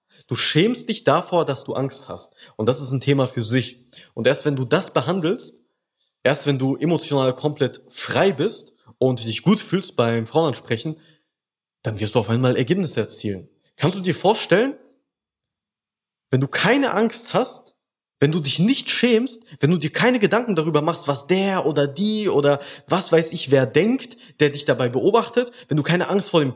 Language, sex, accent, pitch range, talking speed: German, male, German, 135-180 Hz, 185 wpm